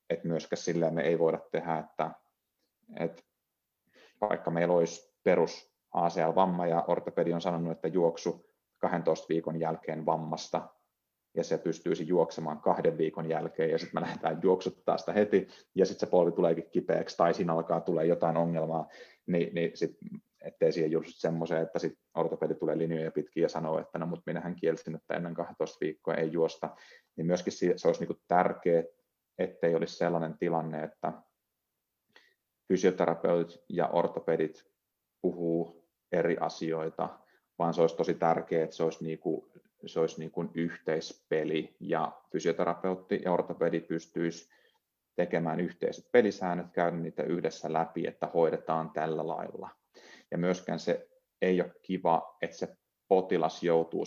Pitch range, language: 80-85 Hz, Finnish